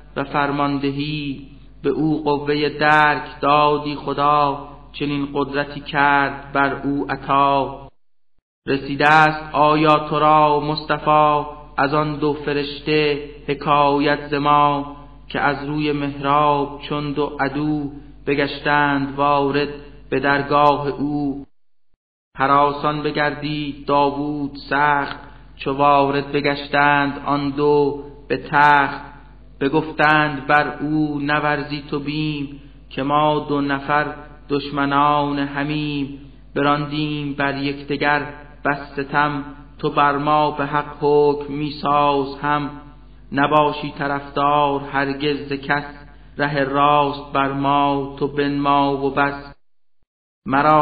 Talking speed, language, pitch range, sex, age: 105 wpm, Persian, 140-150 Hz, male, 30-49